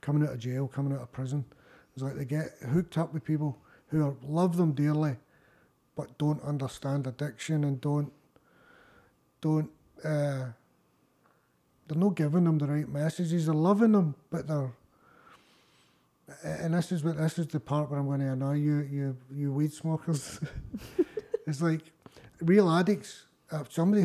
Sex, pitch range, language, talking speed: male, 140-165 Hz, English, 160 wpm